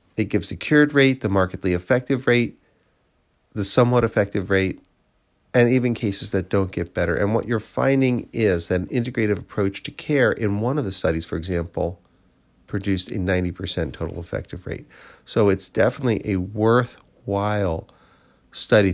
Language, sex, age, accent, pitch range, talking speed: English, male, 40-59, American, 90-120 Hz, 160 wpm